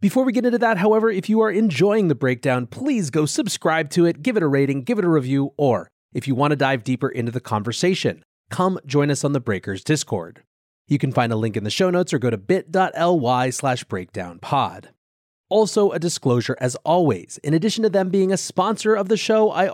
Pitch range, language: 120-175 Hz, English